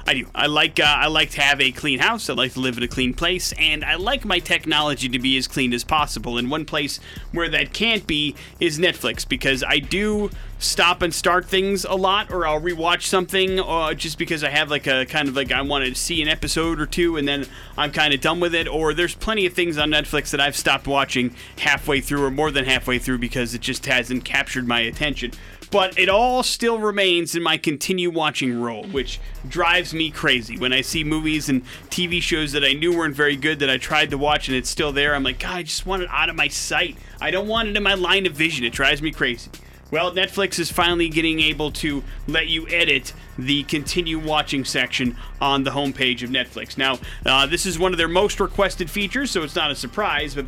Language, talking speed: English, 235 wpm